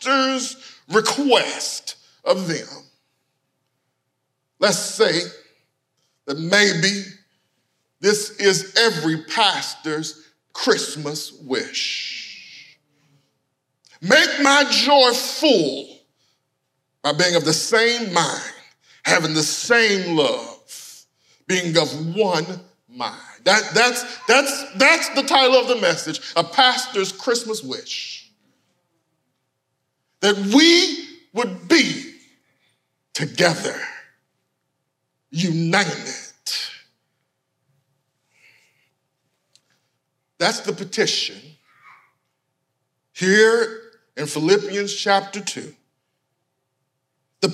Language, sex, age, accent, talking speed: English, male, 50-69, American, 75 wpm